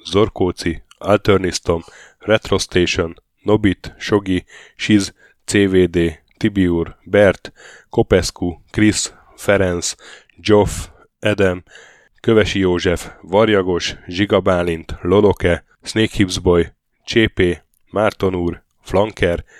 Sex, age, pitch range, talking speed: male, 10-29, 85-105 Hz, 75 wpm